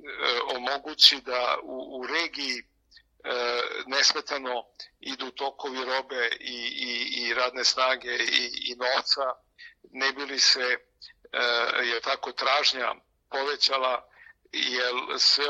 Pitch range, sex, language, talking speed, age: 125-145 Hz, male, Croatian, 110 wpm, 50-69